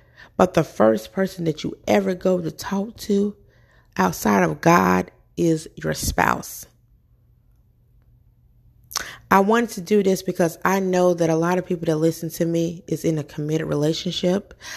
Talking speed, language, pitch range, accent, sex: 160 wpm, English, 150-185 Hz, American, female